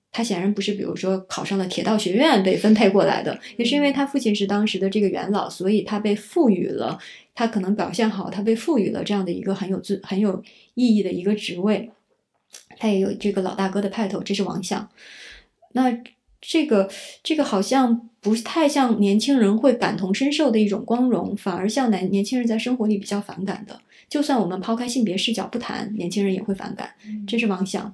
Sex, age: female, 20-39